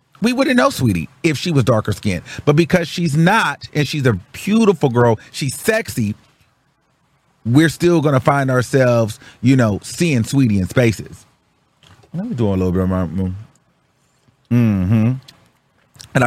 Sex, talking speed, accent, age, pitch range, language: male, 150 wpm, American, 30-49, 120-180 Hz, English